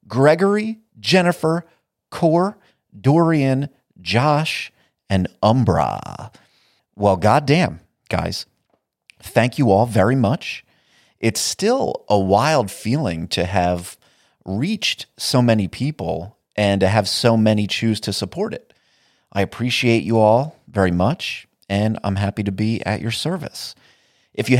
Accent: American